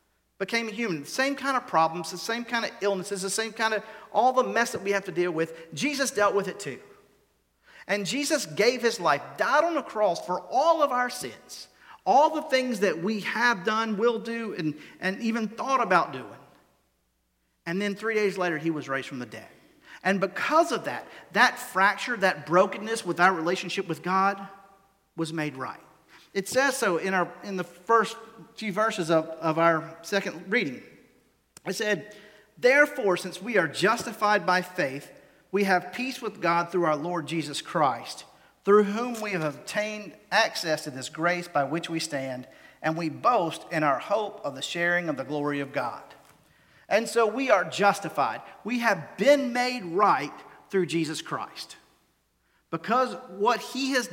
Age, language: 40-59, English